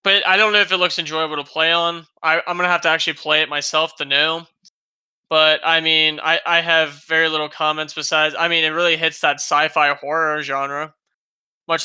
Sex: male